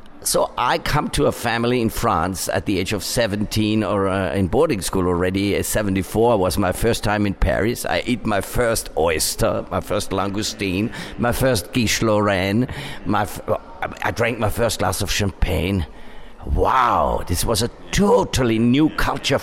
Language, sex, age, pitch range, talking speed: English, male, 50-69, 100-120 Hz, 165 wpm